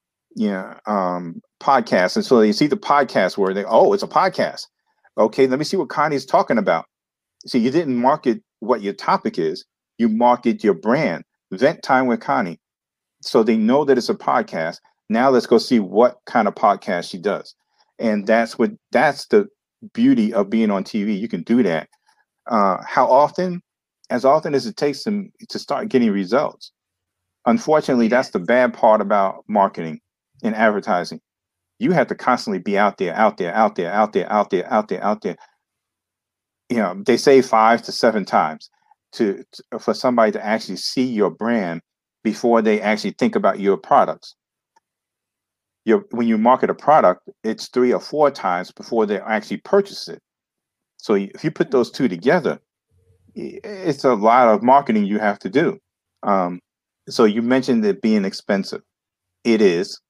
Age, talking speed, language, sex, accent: 40-59, 175 wpm, English, male, American